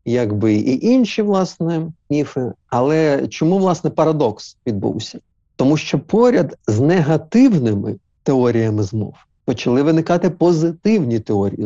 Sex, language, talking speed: male, Ukrainian, 110 wpm